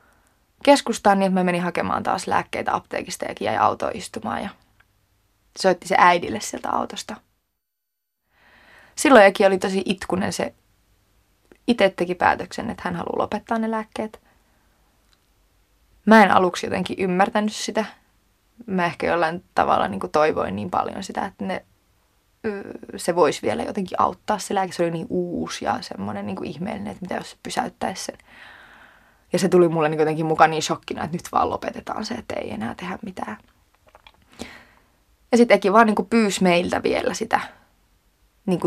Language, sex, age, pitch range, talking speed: Finnish, female, 20-39, 160-210 Hz, 155 wpm